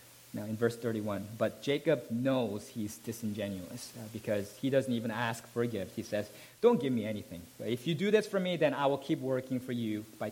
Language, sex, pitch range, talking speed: English, male, 115-165 Hz, 215 wpm